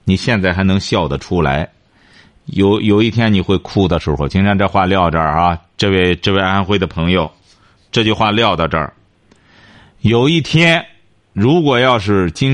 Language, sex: Chinese, male